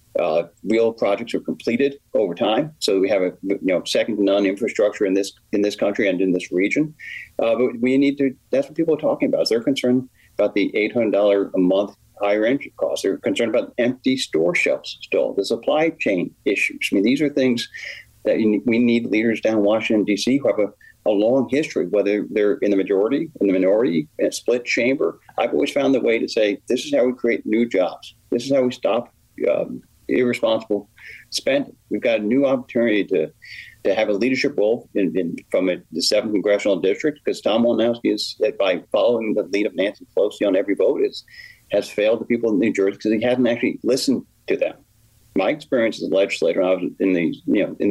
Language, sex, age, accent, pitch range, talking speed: English, male, 40-59, American, 100-135 Hz, 215 wpm